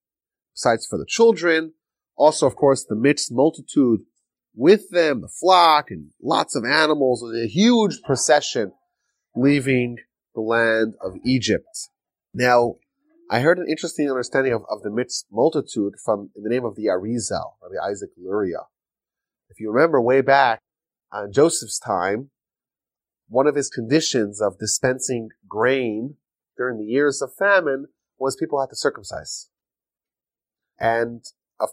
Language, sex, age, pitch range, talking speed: English, male, 30-49, 125-165 Hz, 140 wpm